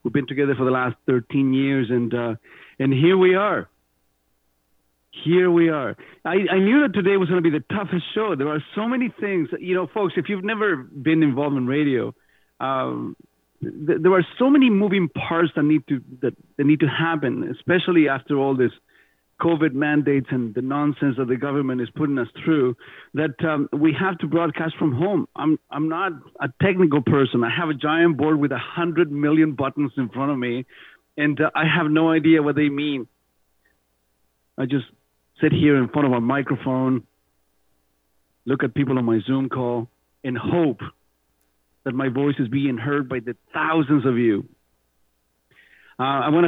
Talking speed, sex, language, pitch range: 185 wpm, male, English, 125-160 Hz